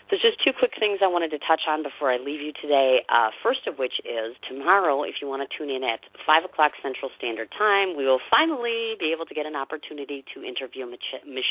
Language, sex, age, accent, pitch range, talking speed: English, female, 40-59, American, 120-150 Hz, 235 wpm